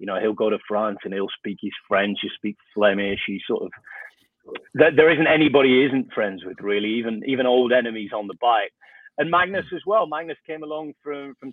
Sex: male